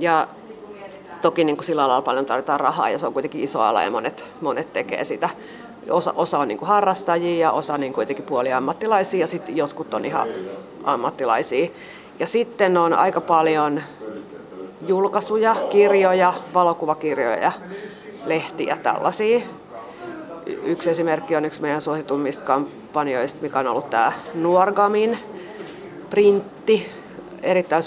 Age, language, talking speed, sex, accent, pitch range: 30-49, Finnish, 130 wpm, female, native, 150-190 Hz